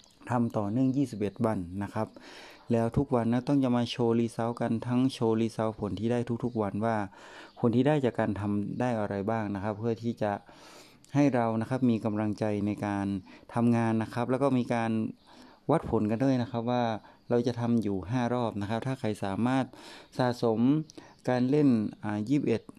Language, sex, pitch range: Thai, male, 105-125 Hz